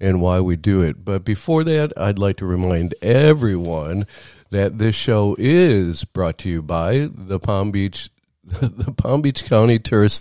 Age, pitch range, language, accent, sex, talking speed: 50-69, 95-140 Hz, English, American, male, 170 wpm